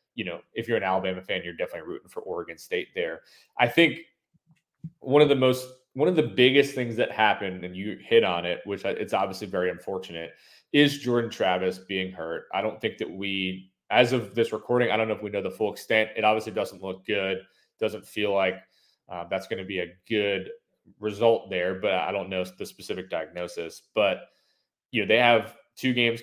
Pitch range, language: 95-140 Hz, English